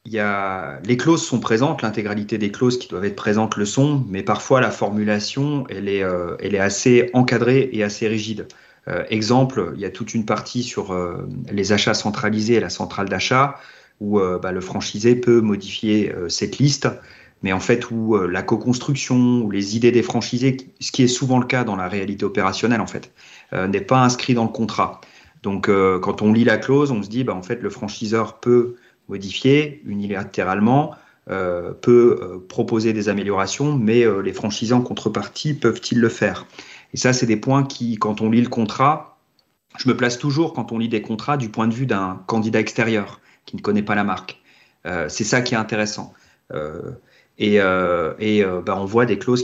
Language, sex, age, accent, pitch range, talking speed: French, male, 40-59, French, 100-125 Hz, 205 wpm